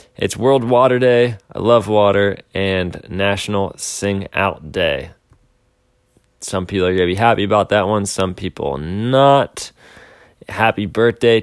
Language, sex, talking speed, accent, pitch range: English, male, 140 wpm, American, 95-120 Hz